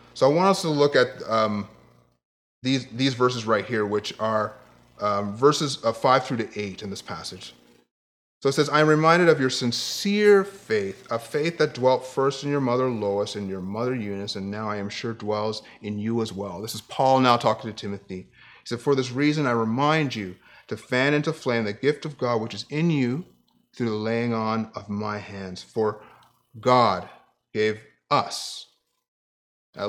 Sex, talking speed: male, 195 wpm